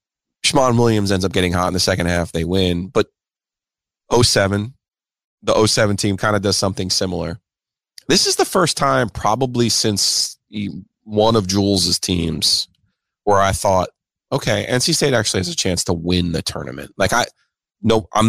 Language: English